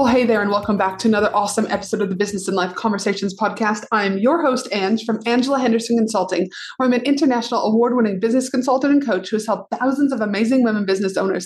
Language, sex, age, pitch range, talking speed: English, female, 30-49, 205-255 Hz, 225 wpm